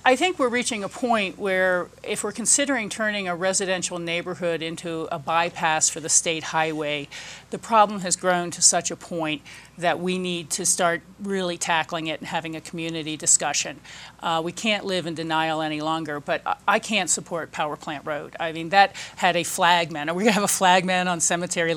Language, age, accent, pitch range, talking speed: English, 40-59, American, 165-195 Hz, 200 wpm